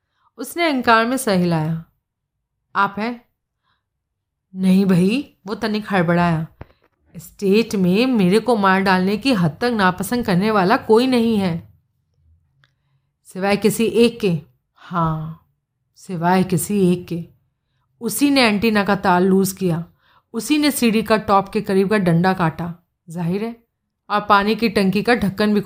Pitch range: 175-235 Hz